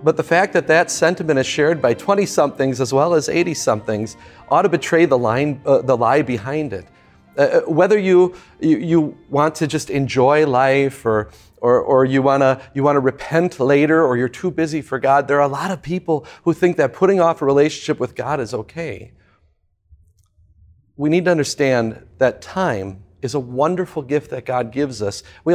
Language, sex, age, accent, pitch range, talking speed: English, male, 40-59, American, 130-170 Hz, 195 wpm